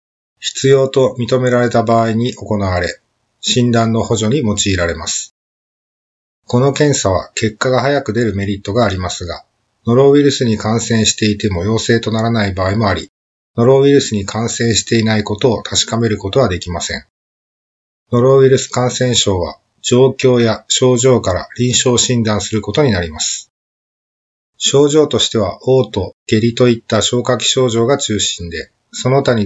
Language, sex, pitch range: Japanese, male, 100-125 Hz